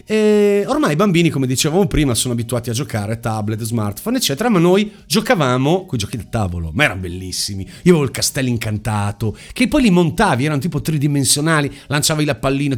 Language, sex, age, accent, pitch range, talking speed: Italian, male, 40-59, native, 130-195 Hz, 185 wpm